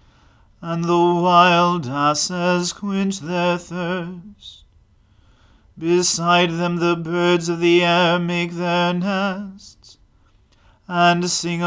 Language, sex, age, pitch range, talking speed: English, male, 40-59, 165-180 Hz, 100 wpm